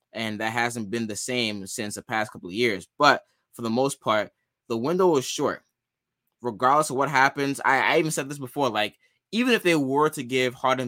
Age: 20-39